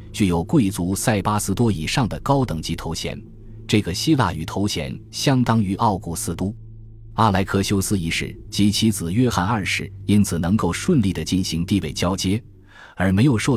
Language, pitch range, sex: Chinese, 85-105 Hz, male